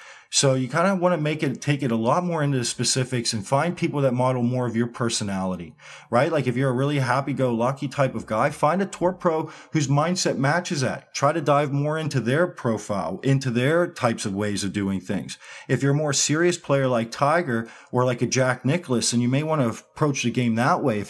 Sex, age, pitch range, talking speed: male, 40-59, 120-145 Hz, 235 wpm